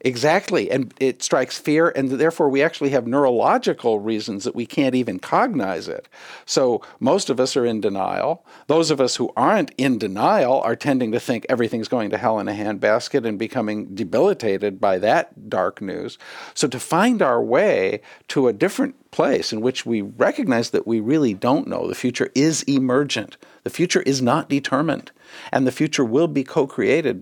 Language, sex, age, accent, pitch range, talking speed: English, male, 50-69, American, 125-185 Hz, 185 wpm